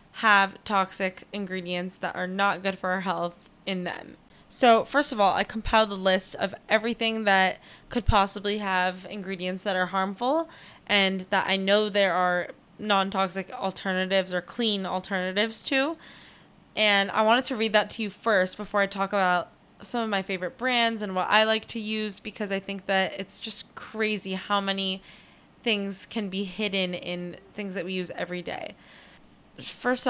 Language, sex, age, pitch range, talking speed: English, female, 10-29, 190-220 Hz, 175 wpm